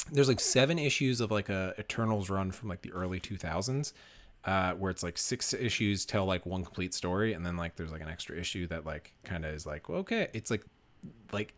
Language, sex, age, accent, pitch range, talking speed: English, male, 30-49, American, 85-110 Hz, 230 wpm